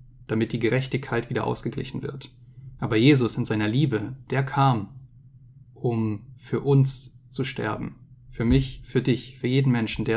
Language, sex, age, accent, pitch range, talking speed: German, male, 10-29, German, 120-135 Hz, 155 wpm